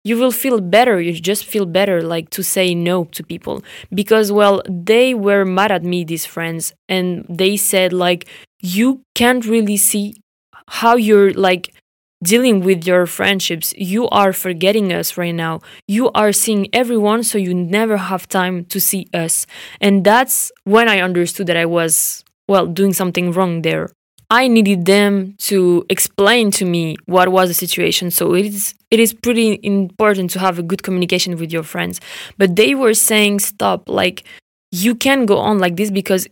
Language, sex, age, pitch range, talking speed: English, female, 20-39, 185-220 Hz, 180 wpm